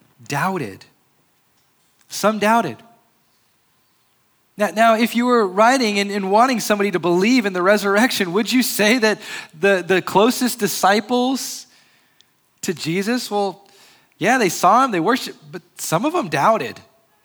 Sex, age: male, 20-39